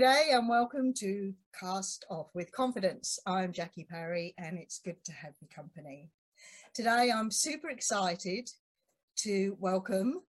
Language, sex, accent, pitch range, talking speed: English, female, British, 175-240 Hz, 140 wpm